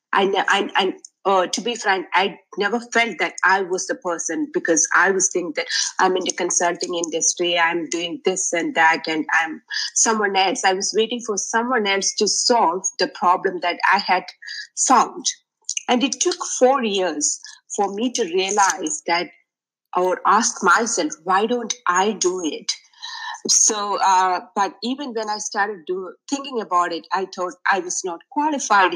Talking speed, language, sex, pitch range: 170 wpm, English, female, 175-245 Hz